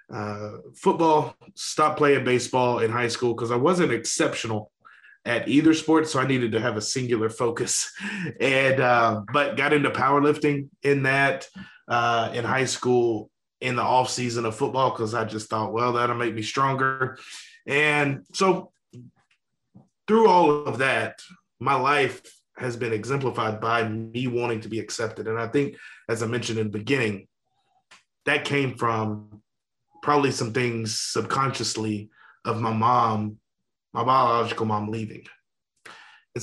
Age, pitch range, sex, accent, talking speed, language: 30-49, 110-135 Hz, male, American, 150 wpm, English